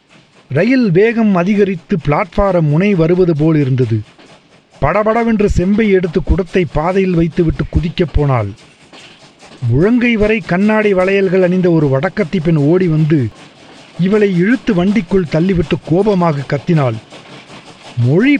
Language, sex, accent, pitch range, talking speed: Tamil, male, native, 160-220 Hz, 110 wpm